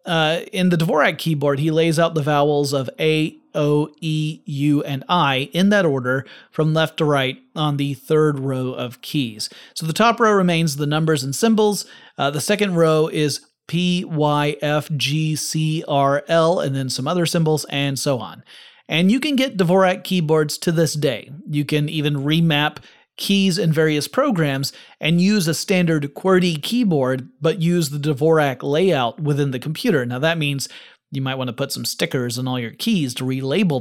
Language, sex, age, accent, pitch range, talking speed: English, male, 30-49, American, 140-170 Hz, 190 wpm